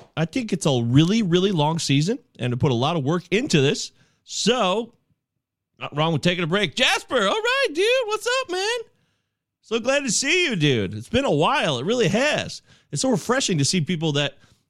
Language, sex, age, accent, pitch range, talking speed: English, male, 30-49, American, 125-185 Hz, 210 wpm